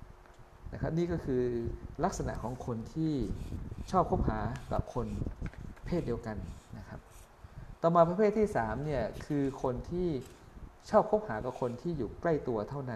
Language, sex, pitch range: Thai, male, 115-155 Hz